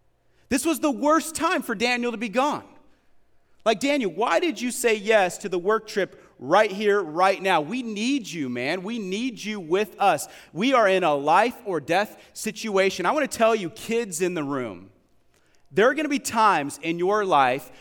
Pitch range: 165-215 Hz